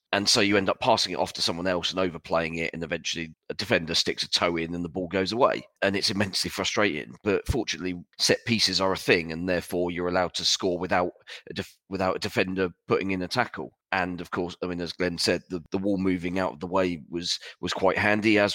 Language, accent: English, British